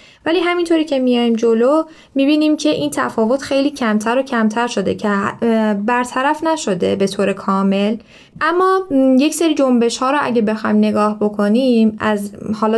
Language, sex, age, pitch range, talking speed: Persian, female, 10-29, 210-250 Hz, 150 wpm